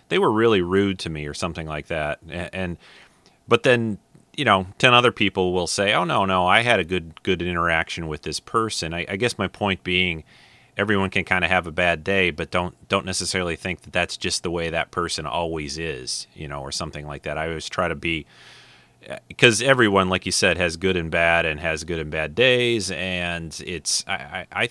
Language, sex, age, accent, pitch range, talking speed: English, male, 30-49, American, 85-105 Hz, 215 wpm